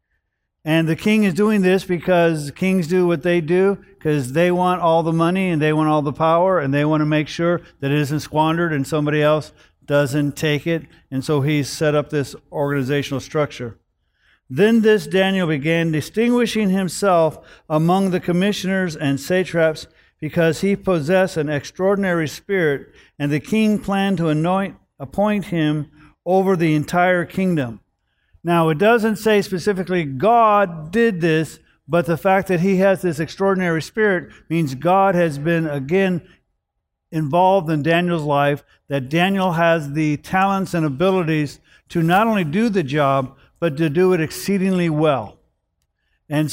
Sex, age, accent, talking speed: male, 50-69, American, 160 wpm